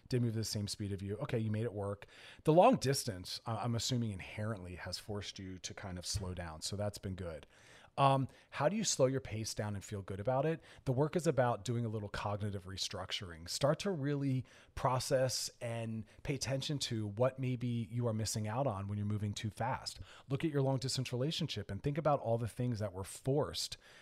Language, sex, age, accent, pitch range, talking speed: English, male, 30-49, American, 105-135 Hz, 220 wpm